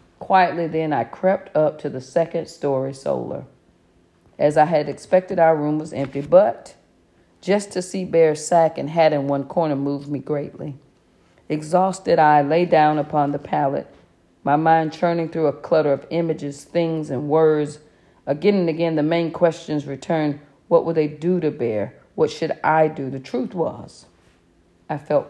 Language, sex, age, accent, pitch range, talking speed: English, female, 40-59, American, 140-170 Hz, 170 wpm